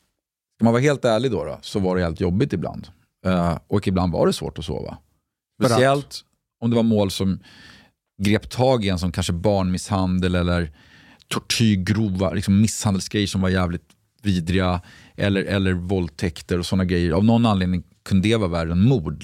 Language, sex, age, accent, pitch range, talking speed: Swedish, male, 40-59, native, 90-110 Hz, 180 wpm